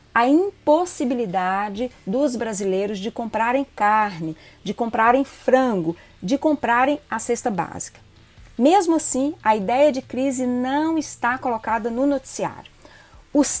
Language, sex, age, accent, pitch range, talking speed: Portuguese, female, 40-59, Brazilian, 215-285 Hz, 120 wpm